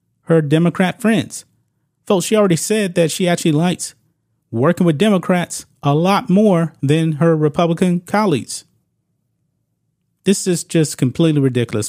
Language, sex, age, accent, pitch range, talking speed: English, male, 30-49, American, 140-180 Hz, 130 wpm